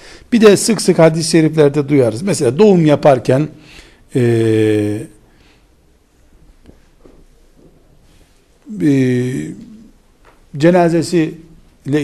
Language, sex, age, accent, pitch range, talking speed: Turkish, male, 60-79, native, 115-160 Hz, 65 wpm